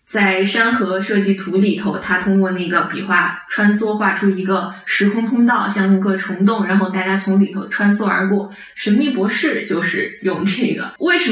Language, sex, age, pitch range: Chinese, female, 20-39, 195-240 Hz